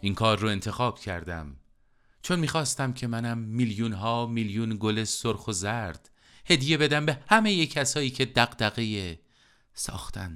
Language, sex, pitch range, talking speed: Persian, male, 95-125 Hz, 145 wpm